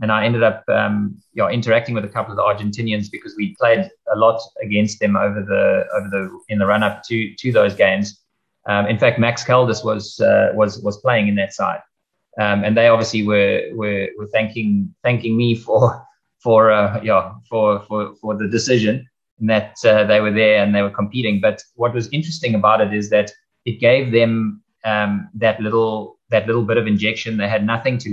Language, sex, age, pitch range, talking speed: English, male, 20-39, 105-115 Hz, 210 wpm